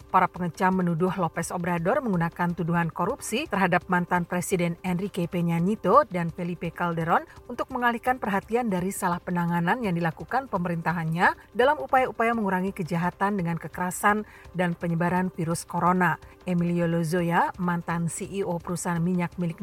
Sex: female